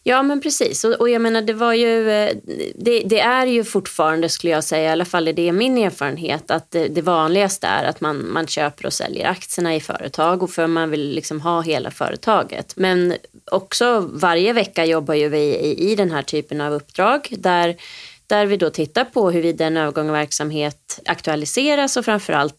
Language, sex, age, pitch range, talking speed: Swedish, female, 30-49, 155-205 Hz, 195 wpm